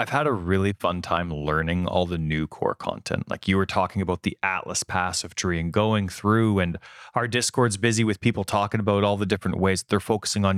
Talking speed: 220 wpm